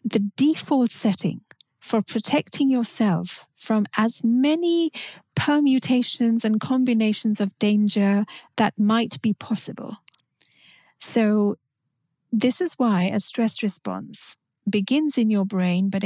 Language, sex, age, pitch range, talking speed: English, female, 40-59, 205-250 Hz, 110 wpm